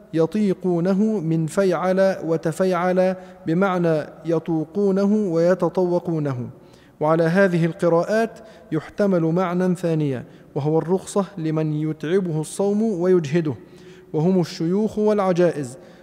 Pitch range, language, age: 165-205 Hz, Arabic, 40-59